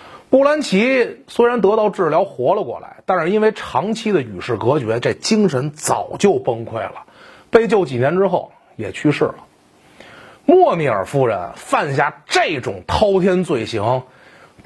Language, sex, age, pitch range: Chinese, male, 30-49, 190-265 Hz